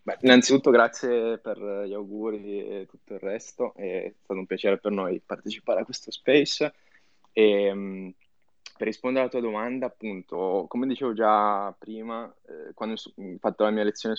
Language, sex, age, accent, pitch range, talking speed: Italian, male, 20-39, native, 100-110 Hz, 160 wpm